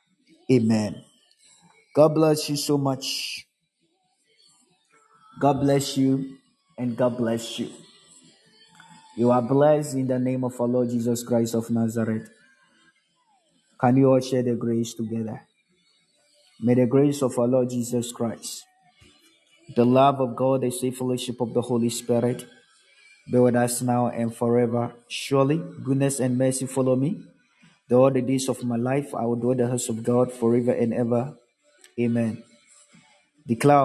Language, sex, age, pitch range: Japanese, male, 20-39, 120-140 Hz